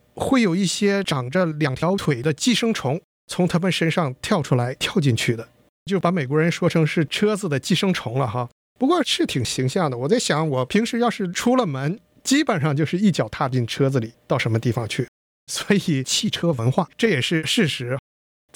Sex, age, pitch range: male, 50-69, 140-205 Hz